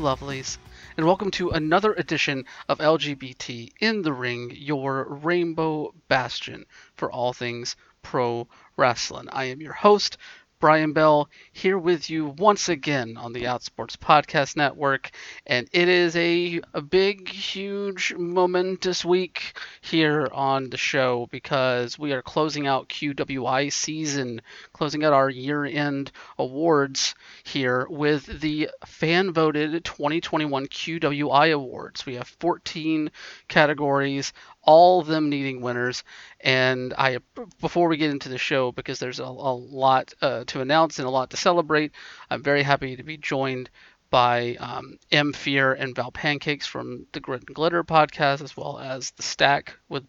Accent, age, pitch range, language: American, 30-49, 130-160 Hz, English